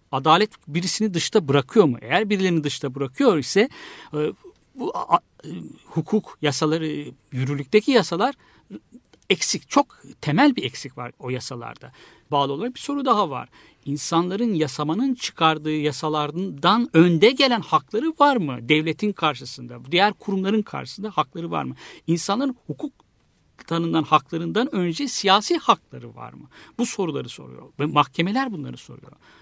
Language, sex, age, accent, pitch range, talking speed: Turkish, male, 60-79, native, 135-205 Hz, 120 wpm